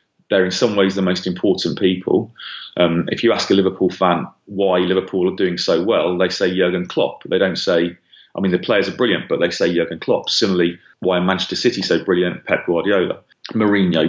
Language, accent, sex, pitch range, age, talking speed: English, British, male, 85-100 Hz, 30-49, 205 wpm